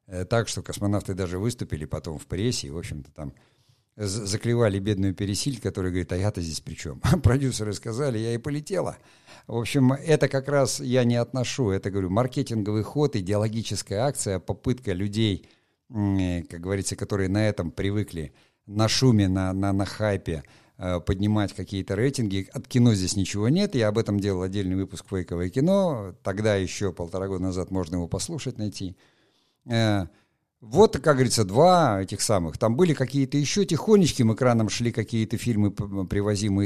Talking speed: 155 wpm